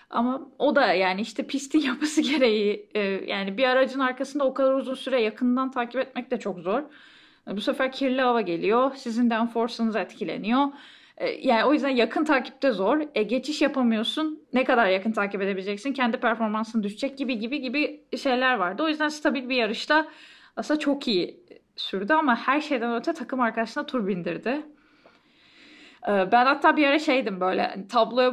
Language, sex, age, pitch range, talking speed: Turkish, female, 10-29, 230-290 Hz, 165 wpm